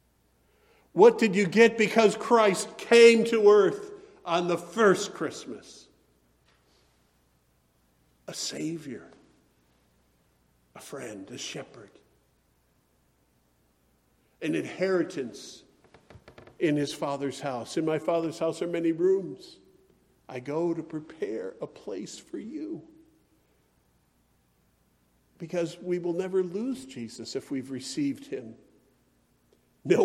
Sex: male